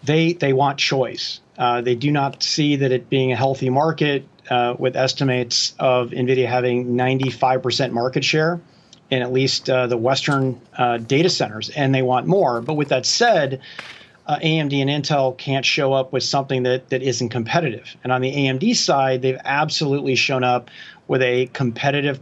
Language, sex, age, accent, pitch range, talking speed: English, male, 40-59, American, 130-160 Hz, 180 wpm